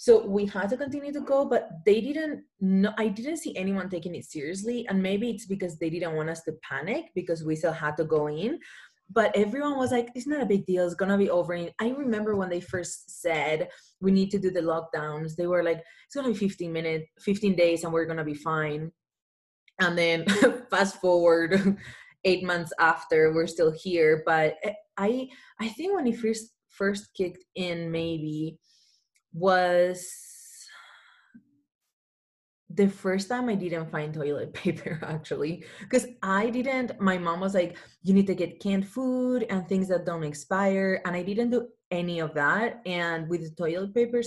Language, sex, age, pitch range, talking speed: English, female, 20-39, 165-220 Hz, 185 wpm